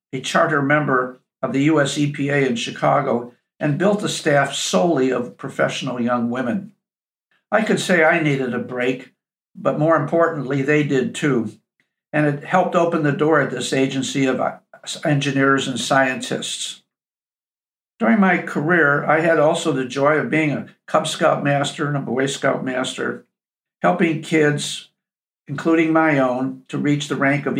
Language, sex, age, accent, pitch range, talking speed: English, male, 60-79, American, 135-160 Hz, 160 wpm